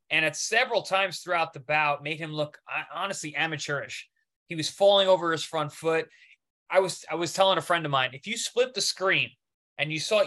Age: 20-39